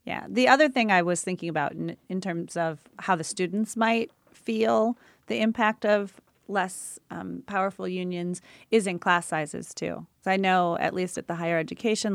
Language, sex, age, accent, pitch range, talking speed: English, female, 30-49, American, 165-205 Hz, 185 wpm